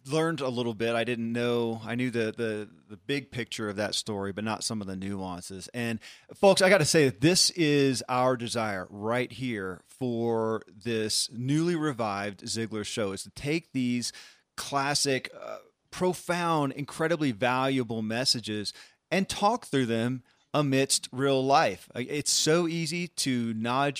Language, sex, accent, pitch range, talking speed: English, male, American, 110-140 Hz, 160 wpm